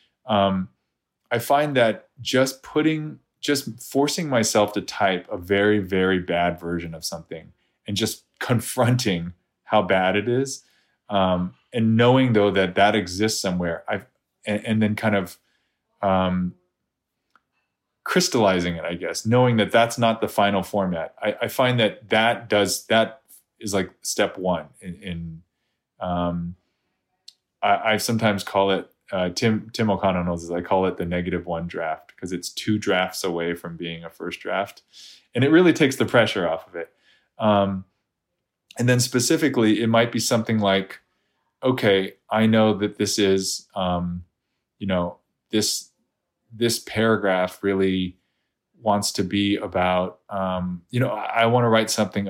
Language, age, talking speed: English, 20-39, 155 wpm